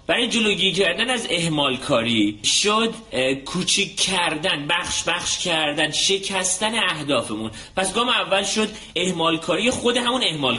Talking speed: 135 wpm